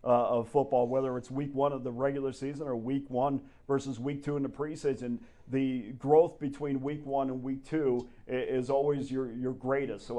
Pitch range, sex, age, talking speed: 130-155 Hz, male, 40-59, 200 wpm